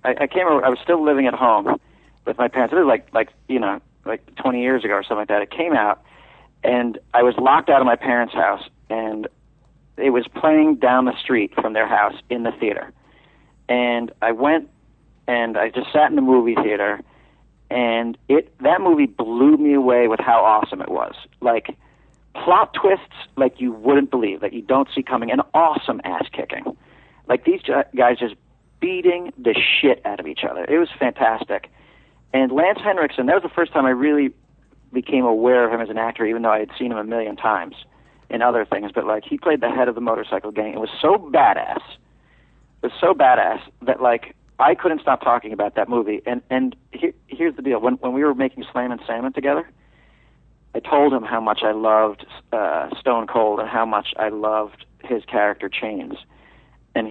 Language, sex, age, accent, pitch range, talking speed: English, male, 40-59, American, 115-140 Hz, 205 wpm